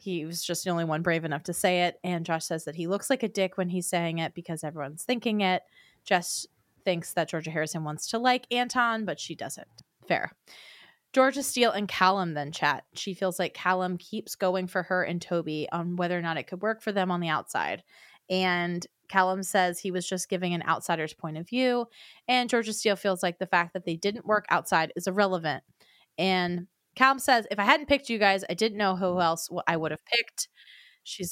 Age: 20-39